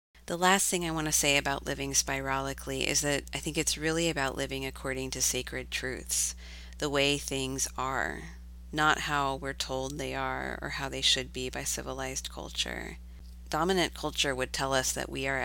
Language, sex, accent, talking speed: English, female, American, 185 wpm